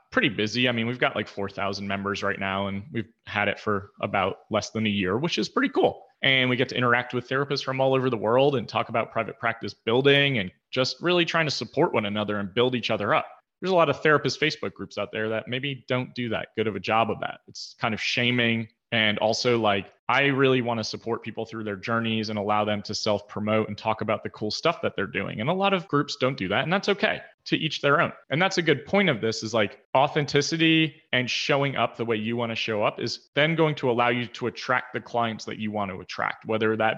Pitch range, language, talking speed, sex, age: 110-145 Hz, English, 255 wpm, male, 30-49